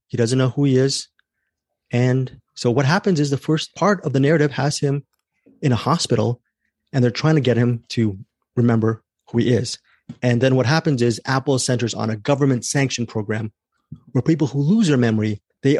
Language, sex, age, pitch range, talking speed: English, male, 30-49, 115-145 Hz, 200 wpm